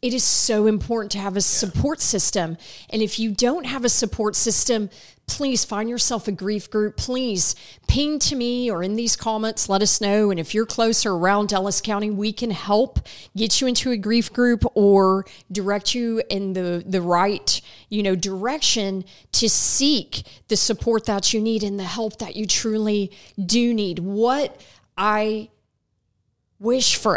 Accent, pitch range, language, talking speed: American, 190-225 Hz, English, 175 wpm